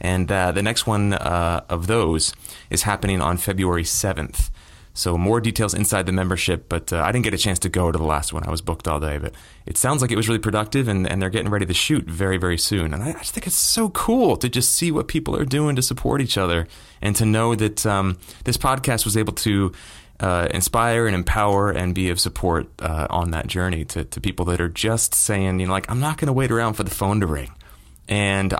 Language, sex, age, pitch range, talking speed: English, male, 30-49, 85-110 Hz, 245 wpm